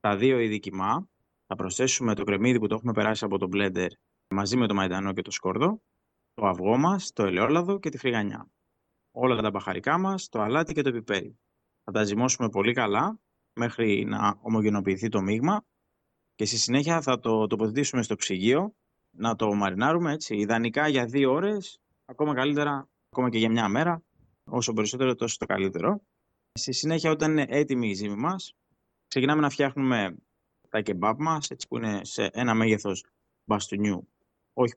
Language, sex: Greek, male